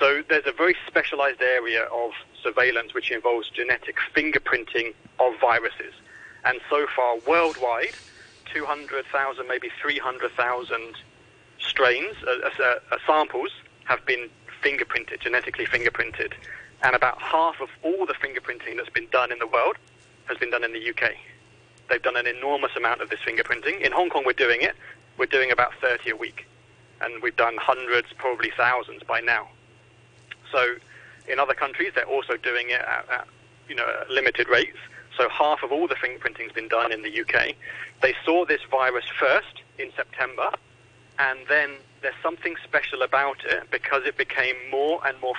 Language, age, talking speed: English, 40-59, 160 wpm